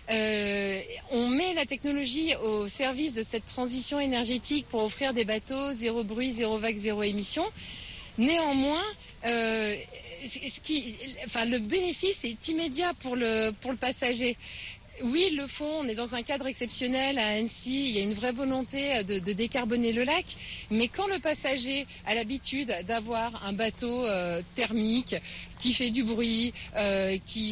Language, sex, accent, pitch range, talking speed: French, female, French, 215-275 Hz, 165 wpm